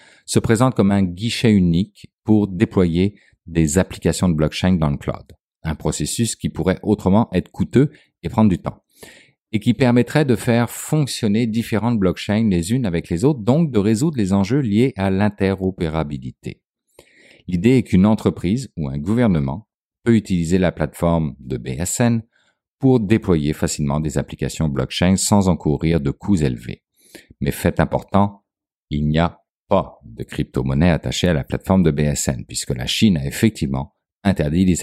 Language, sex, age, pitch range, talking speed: French, male, 50-69, 80-110 Hz, 160 wpm